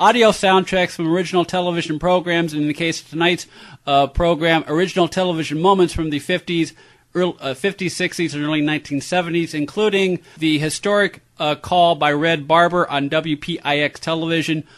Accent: American